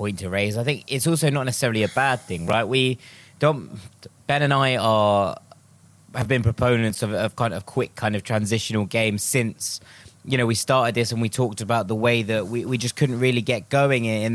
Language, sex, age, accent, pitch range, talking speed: English, male, 20-39, British, 110-140 Hz, 220 wpm